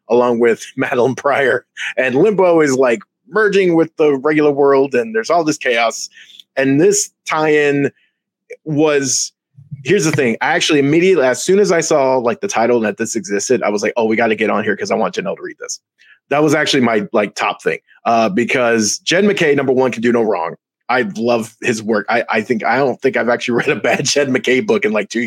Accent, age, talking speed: American, 20-39, 225 wpm